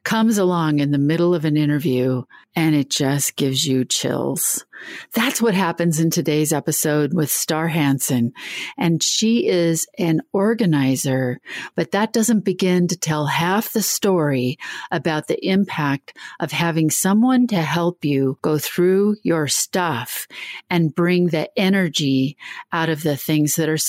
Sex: female